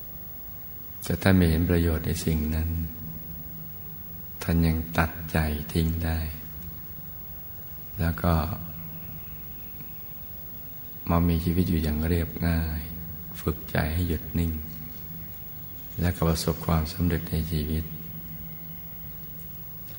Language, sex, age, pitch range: Thai, male, 60-79, 80-85 Hz